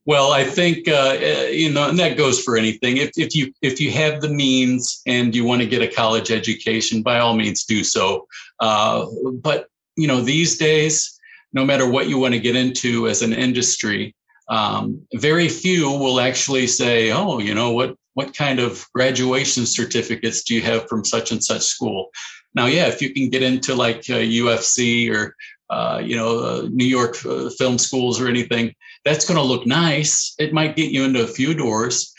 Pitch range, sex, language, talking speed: 120-150 Hz, male, Spanish, 200 wpm